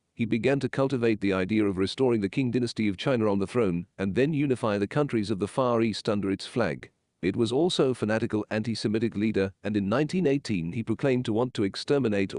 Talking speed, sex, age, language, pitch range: 215 wpm, male, 40-59, English, 100-125 Hz